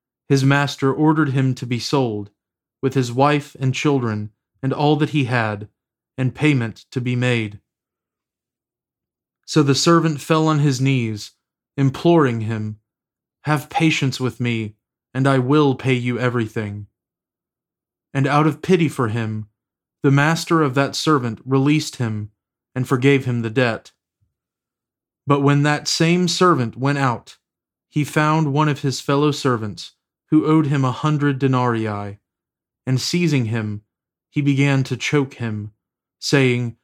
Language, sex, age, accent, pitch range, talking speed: English, male, 30-49, American, 115-145 Hz, 145 wpm